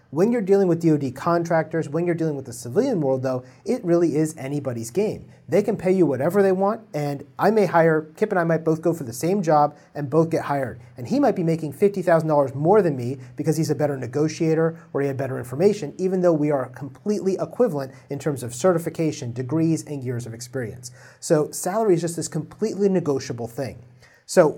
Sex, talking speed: male, 210 wpm